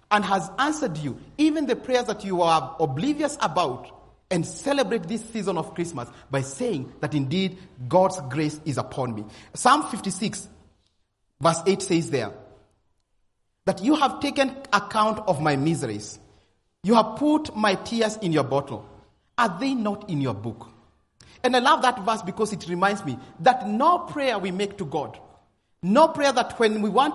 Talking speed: 170 wpm